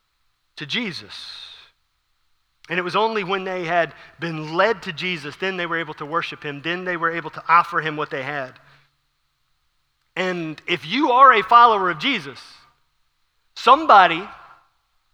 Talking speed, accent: 155 wpm, American